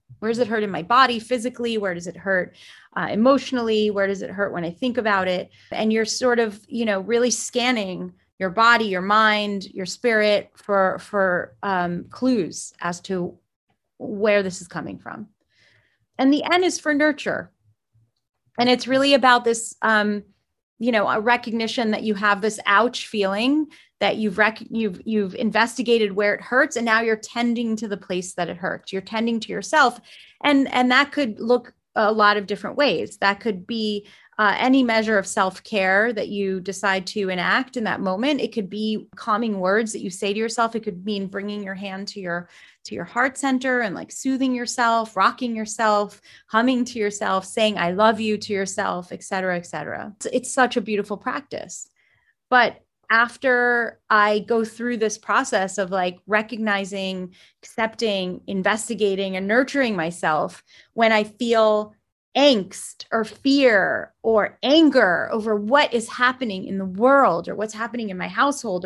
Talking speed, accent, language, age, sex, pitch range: 175 wpm, American, English, 30-49, female, 195-240 Hz